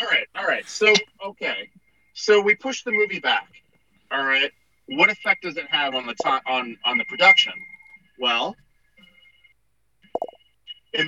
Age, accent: 30-49, American